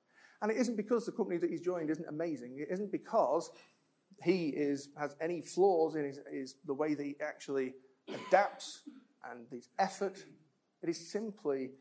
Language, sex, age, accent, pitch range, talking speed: English, male, 40-59, British, 135-190 Hz, 175 wpm